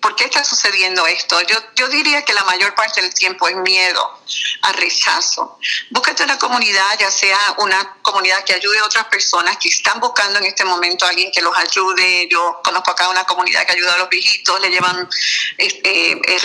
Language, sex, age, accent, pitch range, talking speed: Spanish, female, 50-69, American, 190-255 Hz, 200 wpm